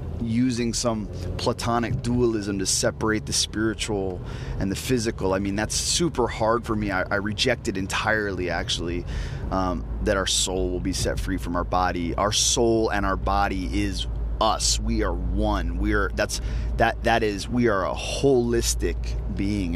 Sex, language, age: male, English, 30-49